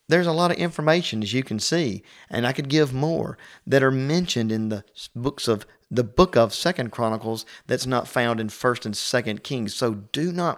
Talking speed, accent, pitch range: 210 wpm, American, 110-135 Hz